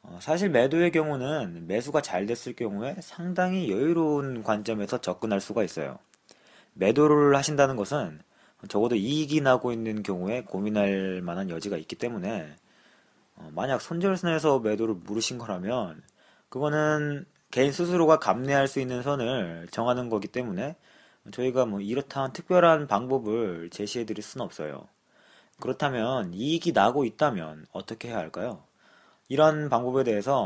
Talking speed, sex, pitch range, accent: 120 wpm, male, 105-150 Hz, Korean